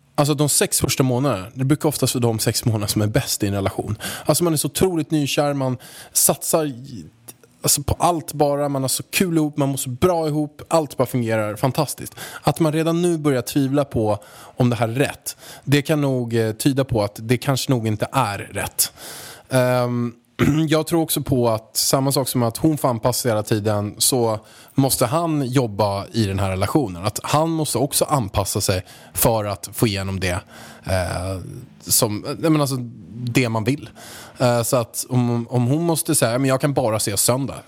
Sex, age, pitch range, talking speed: male, 20-39, 110-145 Hz, 195 wpm